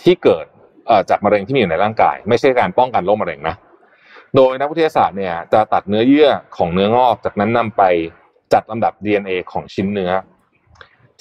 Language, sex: Thai, male